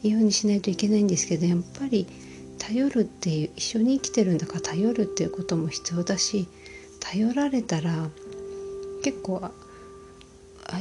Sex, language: female, Japanese